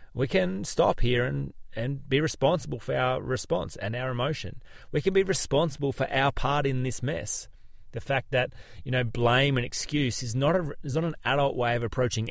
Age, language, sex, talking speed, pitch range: 30-49, English, male, 205 wpm, 110-135 Hz